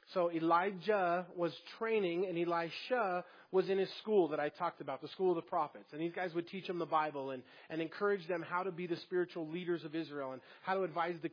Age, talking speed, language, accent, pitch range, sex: 30-49, 235 wpm, English, American, 155-180 Hz, male